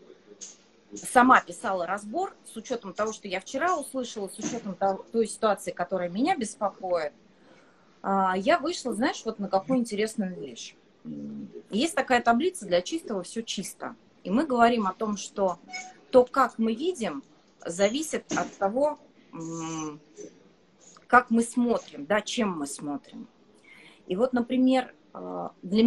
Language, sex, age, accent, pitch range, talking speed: Russian, female, 30-49, native, 185-250 Hz, 130 wpm